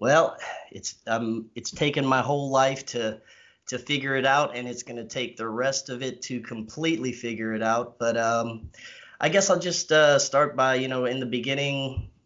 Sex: male